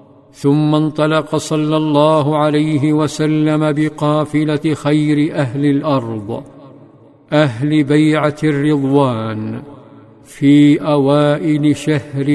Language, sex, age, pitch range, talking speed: Arabic, male, 50-69, 145-155 Hz, 80 wpm